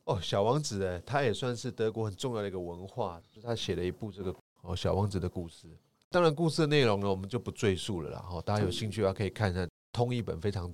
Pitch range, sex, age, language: 95-125 Hz, male, 30-49, Chinese